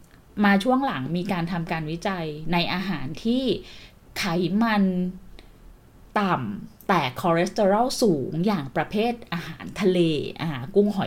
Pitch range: 170-220 Hz